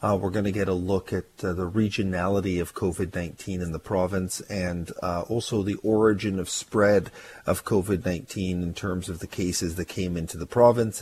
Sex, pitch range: male, 95-110 Hz